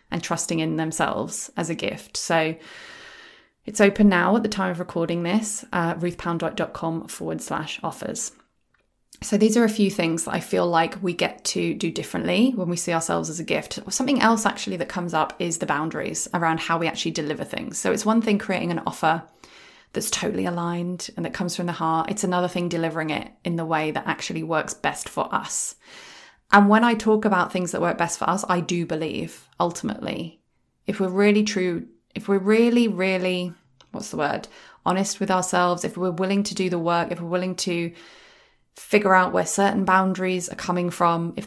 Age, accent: 20-39, British